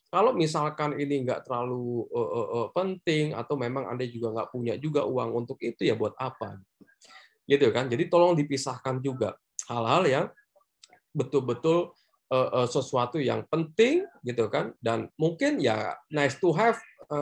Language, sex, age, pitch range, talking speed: Indonesian, male, 20-39, 120-165 Hz, 155 wpm